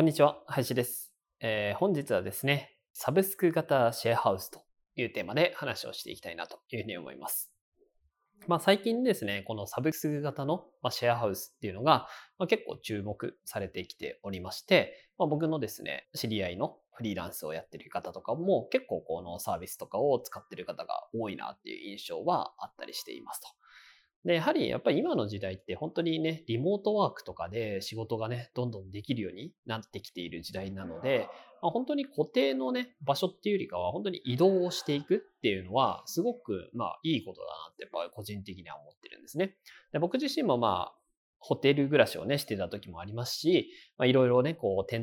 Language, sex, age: Japanese, male, 20-39